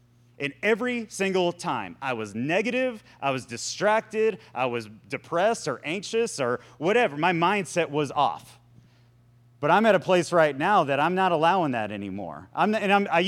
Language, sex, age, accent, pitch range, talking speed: English, male, 30-49, American, 120-175 Hz, 165 wpm